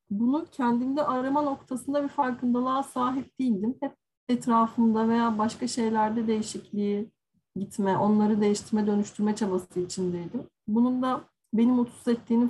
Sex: female